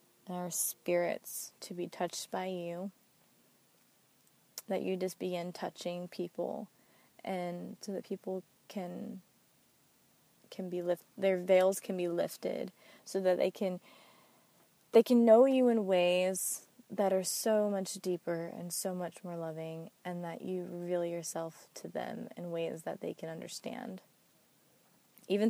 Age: 20-39